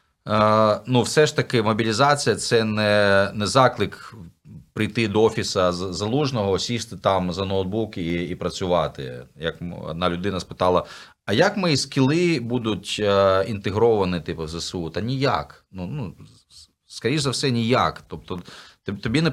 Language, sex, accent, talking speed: Ukrainian, male, native, 135 wpm